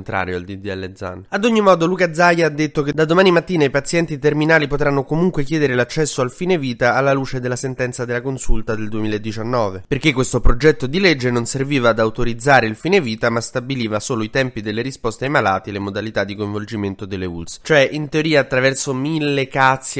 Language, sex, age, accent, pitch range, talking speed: Italian, male, 20-39, native, 110-140 Hz, 200 wpm